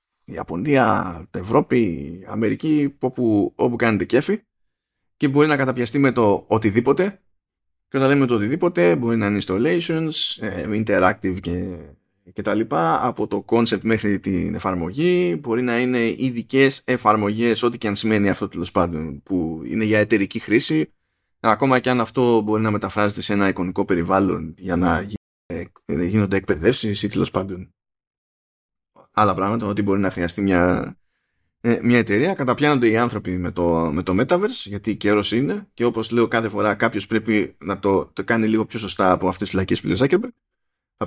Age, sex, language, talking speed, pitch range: 20-39, male, Greek, 165 wpm, 95-125 Hz